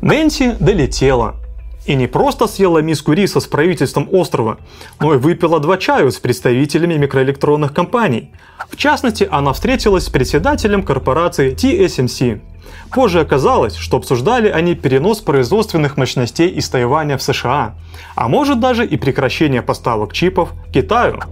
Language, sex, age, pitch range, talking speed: Russian, male, 30-49, 125-205 Hz, 135 wpm